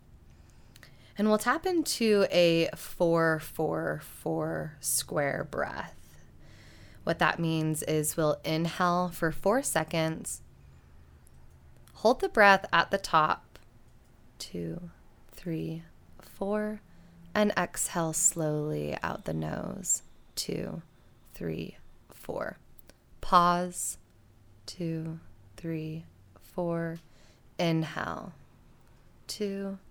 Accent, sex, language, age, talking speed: American, female, English, 20-39, 85 wpm